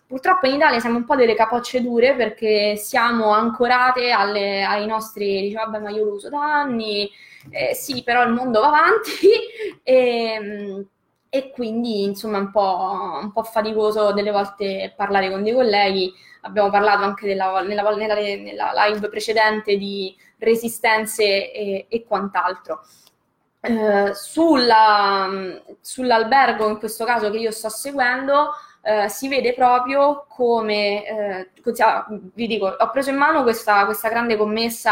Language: Italian